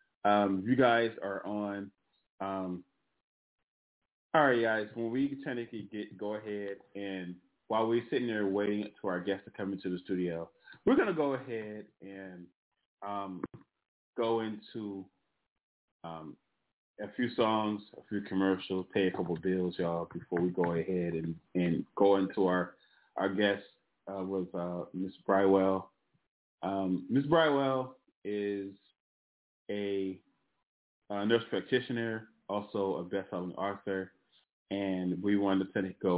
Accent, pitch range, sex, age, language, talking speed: American, 90-105 Hz, male, 20-39, English, 140 wpm